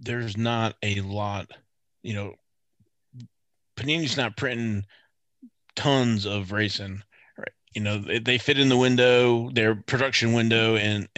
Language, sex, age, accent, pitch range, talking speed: English, male, 30-49, American, 100-115 Hz, 130 wpm